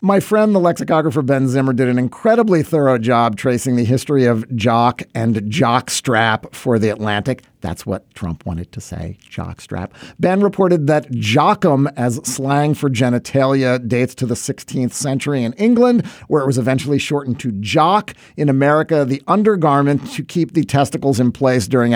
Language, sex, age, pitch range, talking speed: English, male, 50-69, 120-165 Hz, 170 wpm